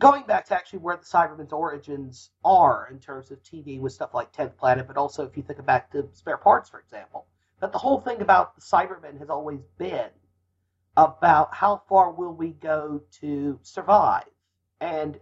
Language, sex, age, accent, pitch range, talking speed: English, male, 40-59, American, 110-185 Hz, 190 wpm